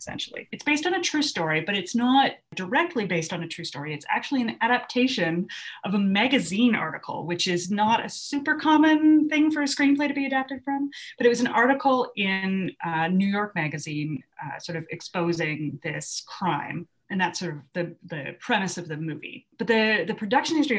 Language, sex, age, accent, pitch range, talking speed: English, female, 30-49, American, 180-265 Hz, 200 wpm